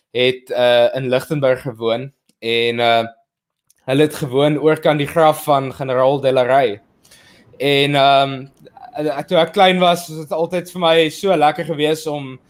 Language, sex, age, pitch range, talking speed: English, male, 20-39, 135-160 Hz, 155 wpm